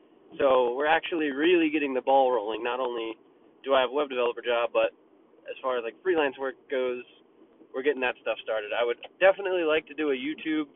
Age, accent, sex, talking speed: 20-39, American, male, 210 wpm